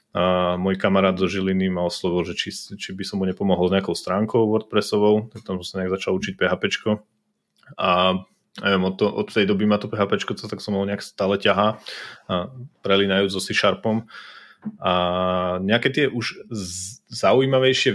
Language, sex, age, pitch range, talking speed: Slovak, male, 30-49, 95-110 Hz, 170 wpm